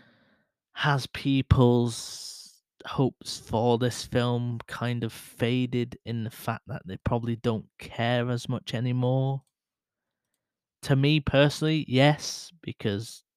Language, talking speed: English, 110 wpm